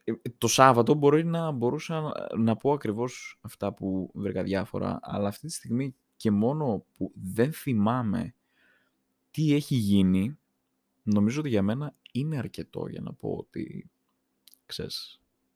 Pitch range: 90-130 Hz